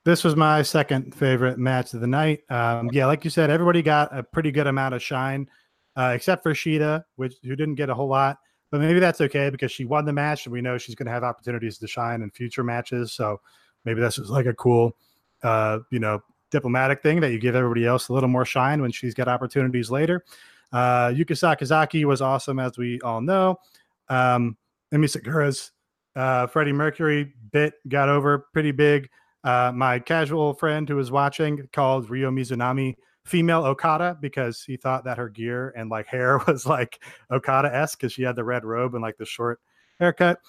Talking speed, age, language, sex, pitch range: 200 wpm, 30-49, English, male, 125-150 Hz